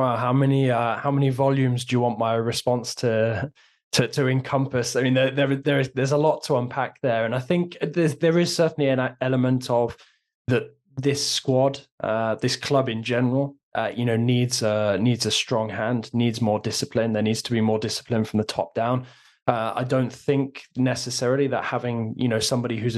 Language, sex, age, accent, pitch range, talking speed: English, male, 20-39, British, 110-130 Hz, 205 wpm